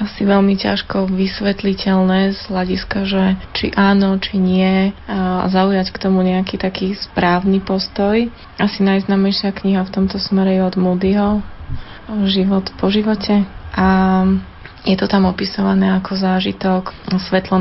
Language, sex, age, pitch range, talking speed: Slovak, female, 20-39, 185-200 Hz, 135 wpm